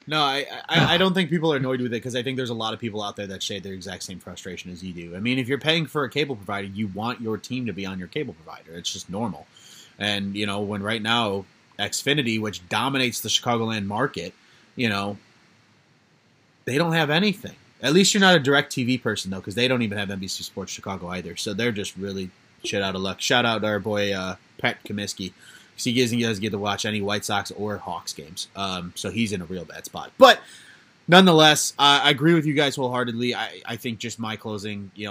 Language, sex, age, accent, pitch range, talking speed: English, male, 30-49, American, 100-130 Hz, 235 wpm